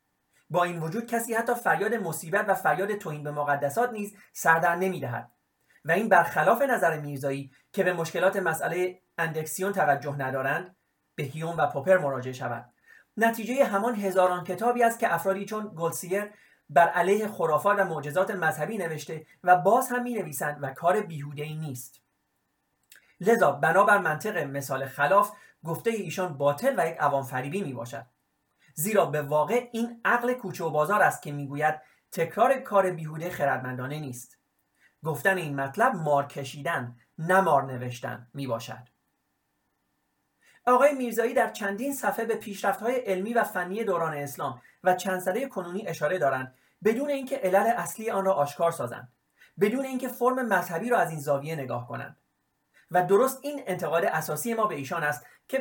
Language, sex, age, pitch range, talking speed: Persian, male, 30-49, 150-210 Hz, 155 wpm